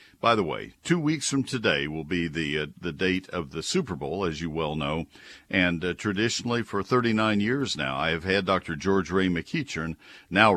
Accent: American